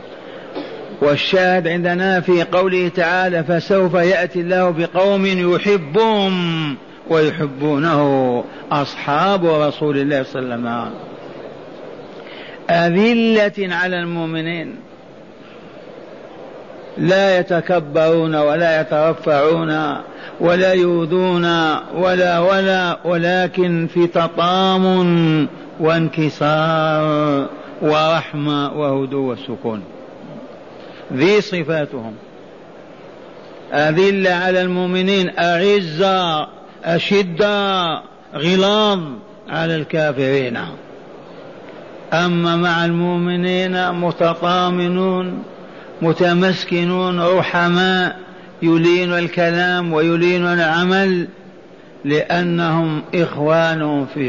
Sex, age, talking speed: male, 50-69, 65 wpm